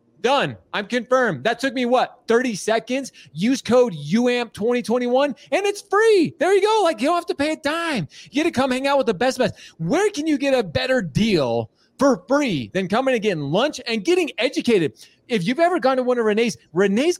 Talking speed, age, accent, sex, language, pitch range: 215 wpm, 30-49, American, male, English, 180-265 Hz